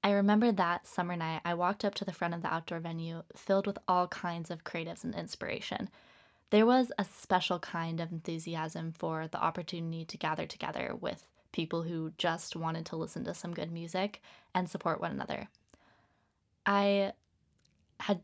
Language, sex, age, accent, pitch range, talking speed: English, female, 20-39, American, 170-200 Hz, 175 wpm